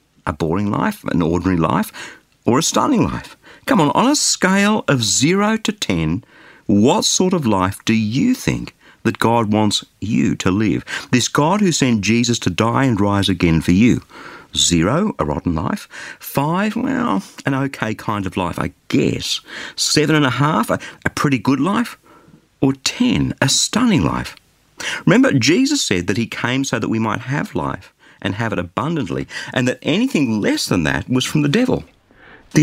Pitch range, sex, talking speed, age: 95-150 Hz, male, 180 wpm, 50-69